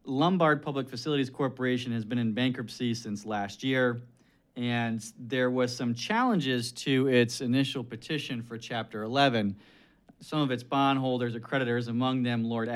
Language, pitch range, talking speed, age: English, 115-135 Hz, 150 wpm, 40-59